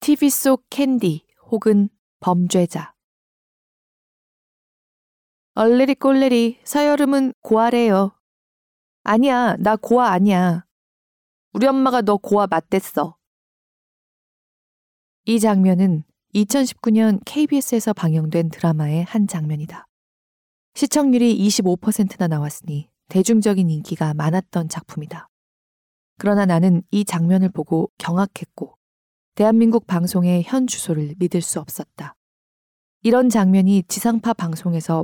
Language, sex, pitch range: Korean, female, 165-230 Hz